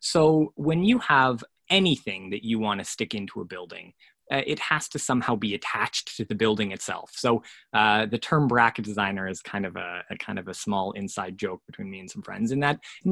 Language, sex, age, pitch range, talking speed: English, male, 20-39, 105-155 Hz, 225 wpm